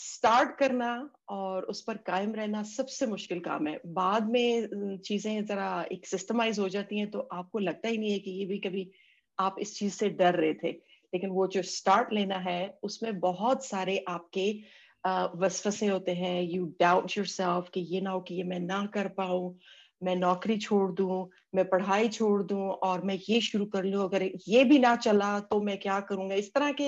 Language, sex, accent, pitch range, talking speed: English, female, Indian, 185-235 Hz, 145 wpm